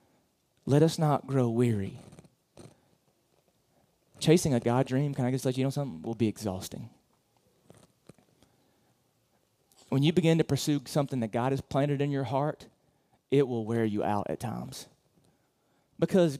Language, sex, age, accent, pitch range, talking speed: English, male, 30-49, American, 130-175 Hz, 145 wpm